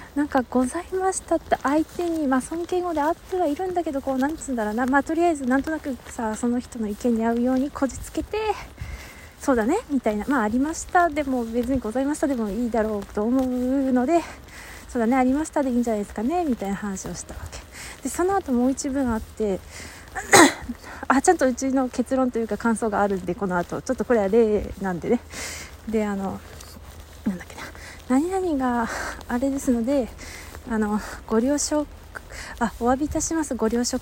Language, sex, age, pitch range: Japanese, female, 20-39, 215-295 Hz